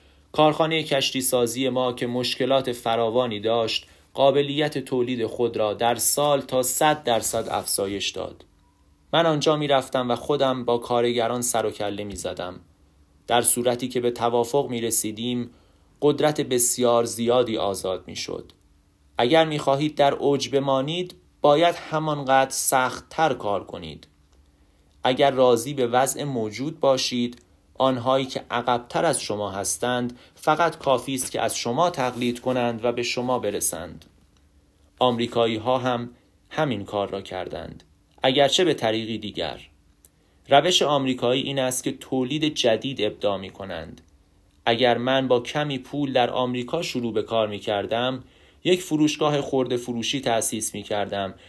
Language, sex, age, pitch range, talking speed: Persian, male, 30-49, 105-135 Hz, 140 wpm